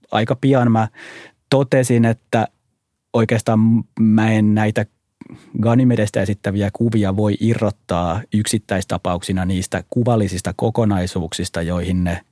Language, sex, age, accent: Finnish, male, 30-49, native